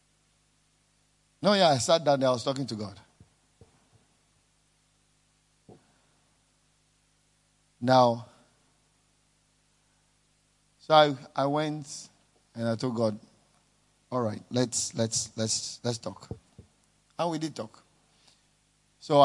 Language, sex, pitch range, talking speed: English, male, 115-140 Hz, 100 wpm